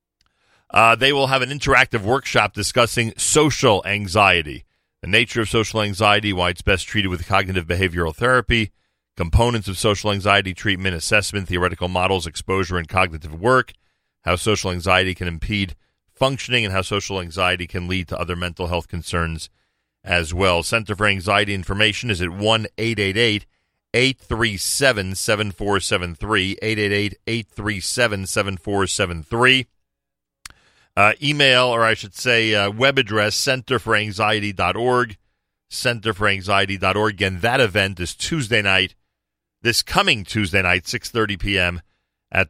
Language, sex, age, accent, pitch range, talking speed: English, male, 40-59, American, 95-115 Hz, 120 wpm